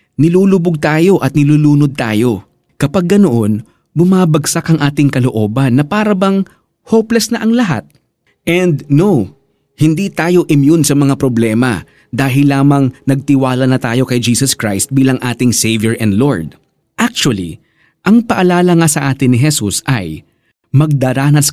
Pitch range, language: 115-160 Hz, Filipino